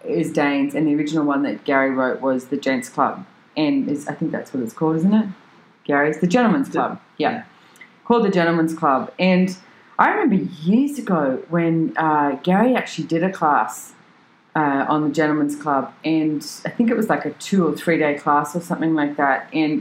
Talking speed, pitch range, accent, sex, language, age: 200 wpm, 160-215 Hz, Australian, female, English, 30-49